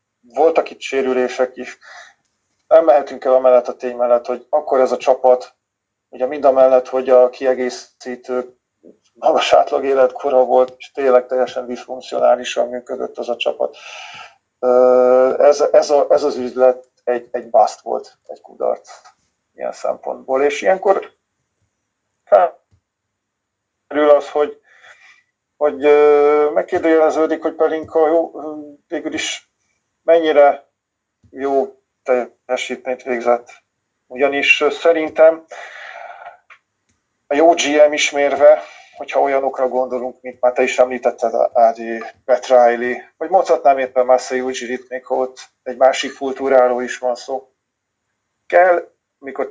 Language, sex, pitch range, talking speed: Hungarian, male, 125-145 Hz, 115 wpm